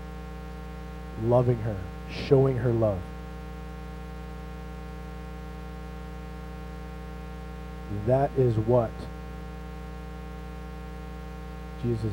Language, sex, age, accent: English, male, 30-49, American